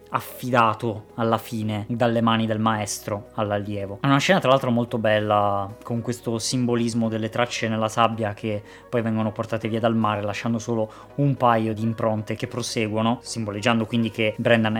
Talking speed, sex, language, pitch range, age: 165 wpm, female, Italian, 110-140 Hz, 20-39